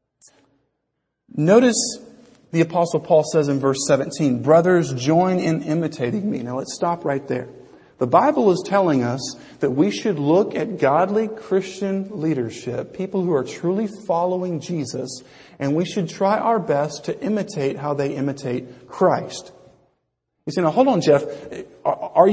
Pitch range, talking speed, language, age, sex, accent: 175-245 Hz, 150 wpm, English, 40-59, male, American